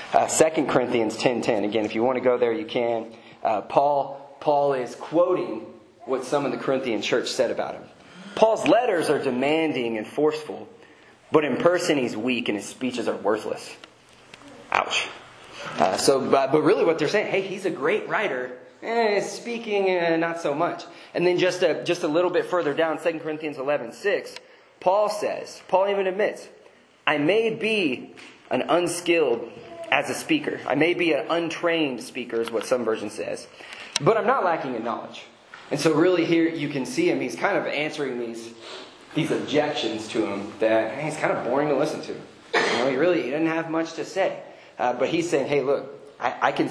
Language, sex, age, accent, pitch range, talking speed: English, male, 30-49, American, 130-180 Hz, 195 wpm